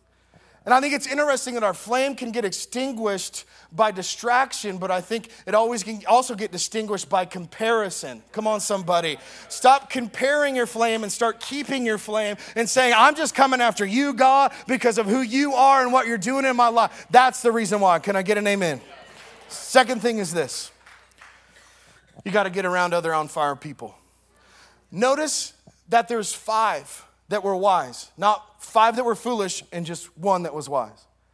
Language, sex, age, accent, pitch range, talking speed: English, male, 30-49, American, 185-240 Hz, 185 wpm